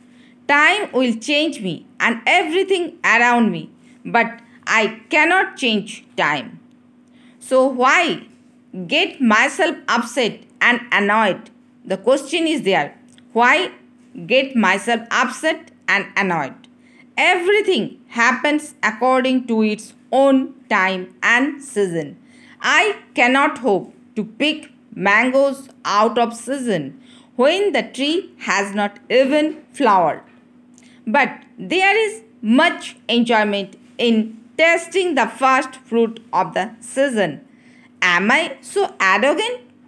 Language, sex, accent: Hindi, female, native